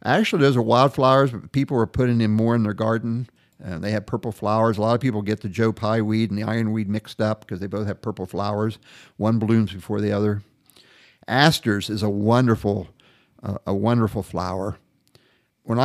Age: 50-69